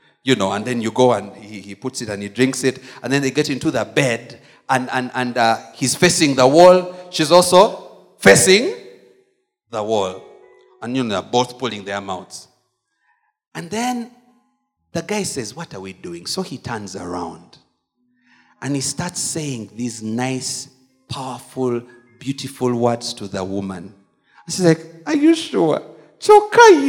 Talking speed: 170 wpm